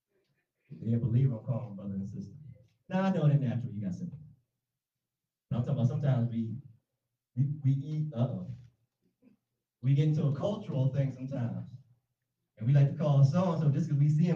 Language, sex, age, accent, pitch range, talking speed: English, male, 30-49, American, 125-160 Hz, 190 wpm